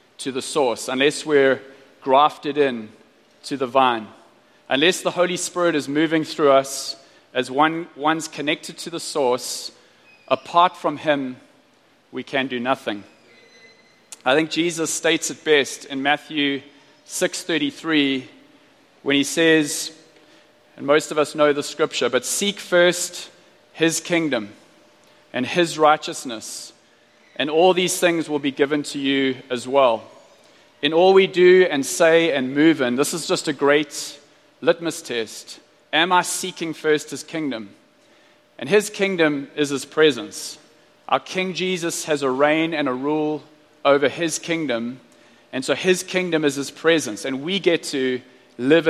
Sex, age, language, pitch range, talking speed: male, 30-49, English, 140-170 Hz, 150 wpm